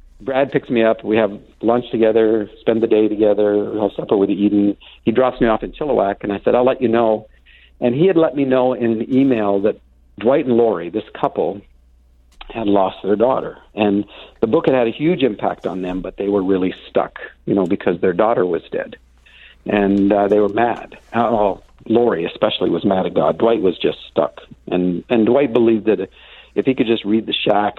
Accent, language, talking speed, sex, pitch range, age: American, English, 215 wpm, male, 100-120 Hz, 50-69